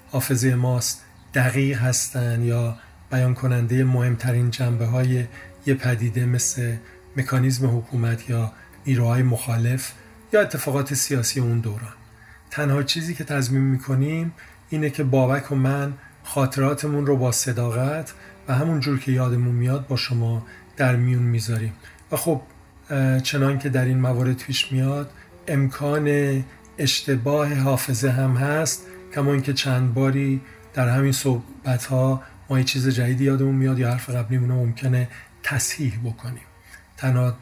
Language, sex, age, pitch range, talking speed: Persian, male, 40-59, 125-140 Hz, 135 wpm